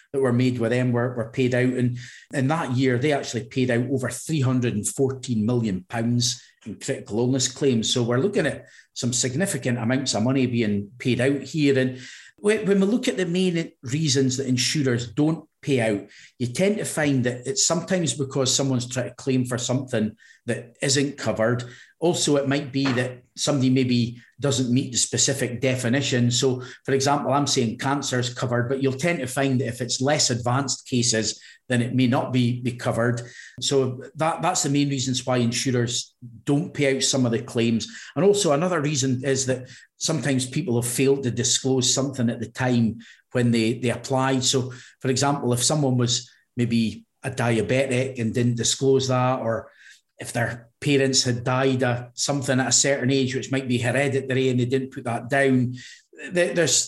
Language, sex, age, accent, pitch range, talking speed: English, male, 40-59, British, 120-140 Hz, 185 wpm